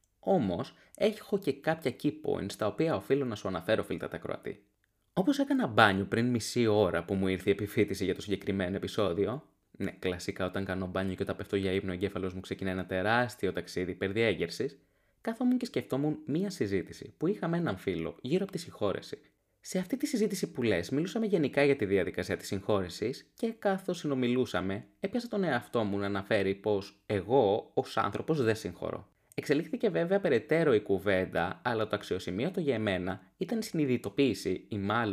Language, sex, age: Greek, male, 20-39